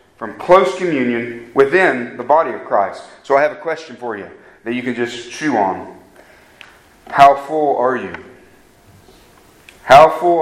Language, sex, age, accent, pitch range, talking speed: English, male, 40-59, American, 125-155 Hz, 155 wpm